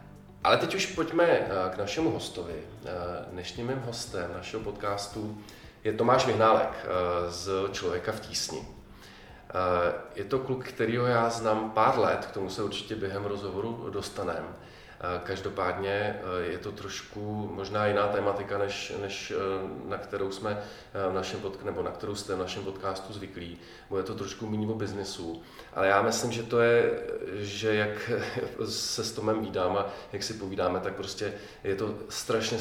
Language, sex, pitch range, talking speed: Czech, male, 95-110 Hz, 155 wpm